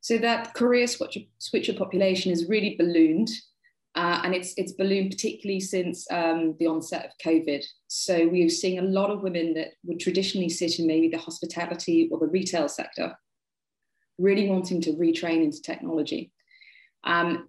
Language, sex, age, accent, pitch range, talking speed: English, female, 20-39, British, 165-200 Hz, 160 wpm